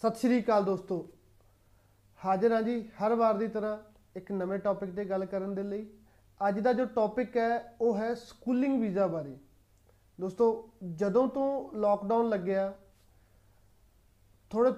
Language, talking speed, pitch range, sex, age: Punjabi, 140 wpm, 195-240 Hz, male, 30-49